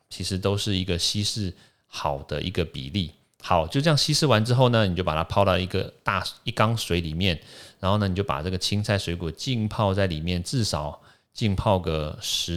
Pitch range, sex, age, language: 85-110 Hz, male, 30-49, Chinese